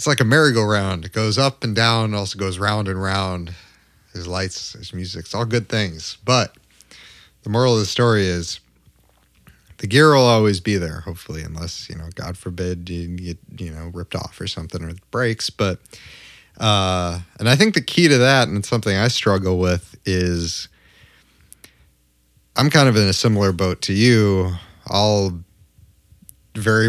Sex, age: male, 30-49